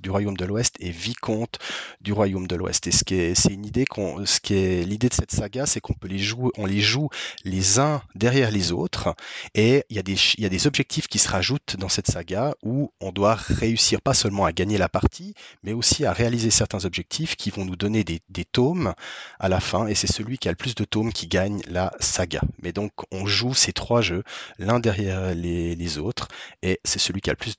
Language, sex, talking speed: French, male, 220 wpm